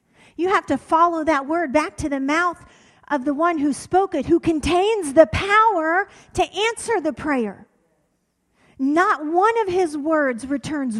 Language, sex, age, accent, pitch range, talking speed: English, female, 40-59, American, 230-310 Hz, 165 wpm